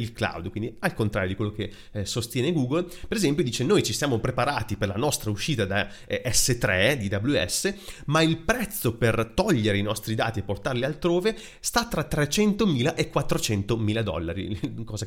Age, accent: 30-49, native